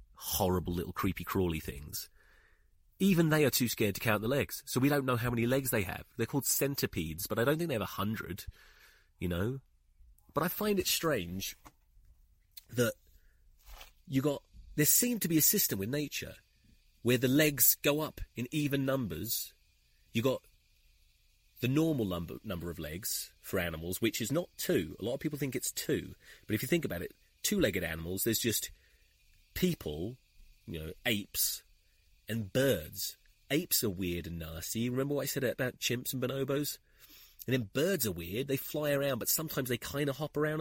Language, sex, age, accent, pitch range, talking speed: English, male, 30-49, British, 85-140 Hz, 185 wpm